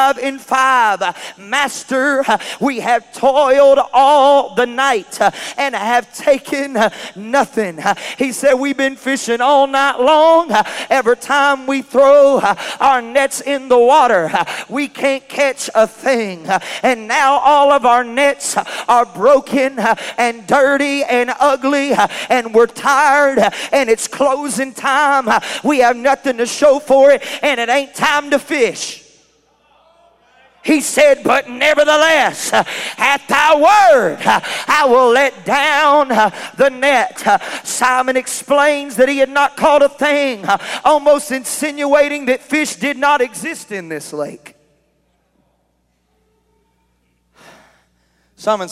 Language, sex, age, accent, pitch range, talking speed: English, male, 40-59, American, 220-280 Hz, 125 wpm